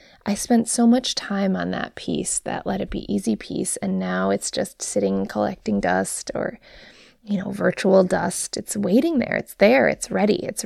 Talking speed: 190 wpm